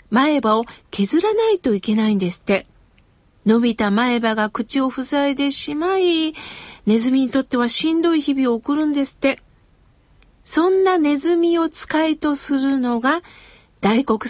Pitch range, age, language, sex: 235-325 Hz, 50-69, Japanese, female